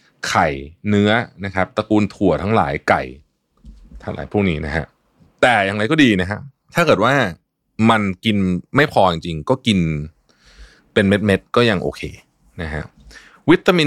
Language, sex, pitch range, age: Thai, male, 85-110 Hz, 20-39